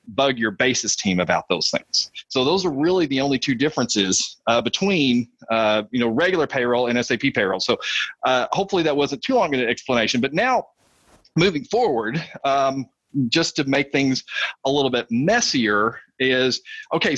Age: 40-59